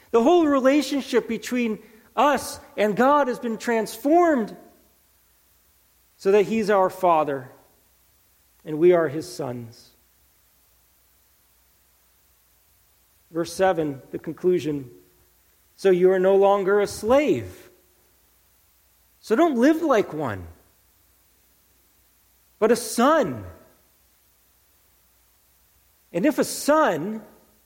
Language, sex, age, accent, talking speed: English, male, 40-59, American, 95 wpm